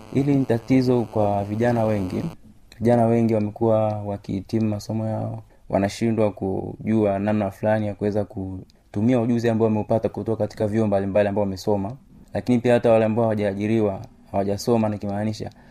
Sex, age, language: male, 30-49, Swahili